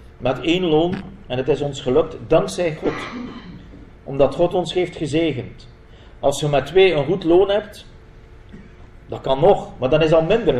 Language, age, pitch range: Dutch, 40-59, 140-190 Hz